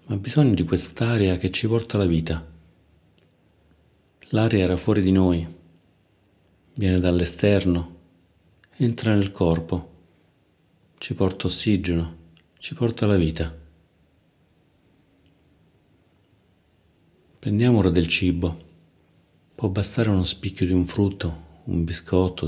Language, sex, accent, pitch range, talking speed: Italian, male, native, 85-100 Hz, 105 wpm